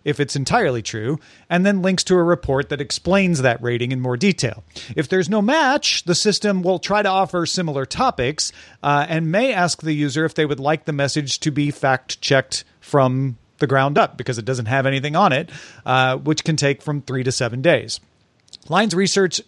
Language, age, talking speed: English, 40-59, 205 wpm